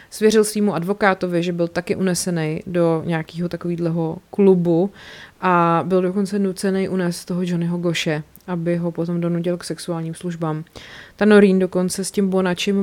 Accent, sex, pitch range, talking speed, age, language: native, female, 170-185 Hz, 150 wpm, 30-49, Czech